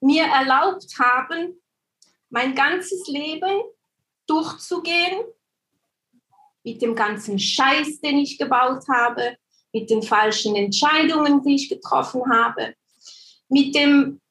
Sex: female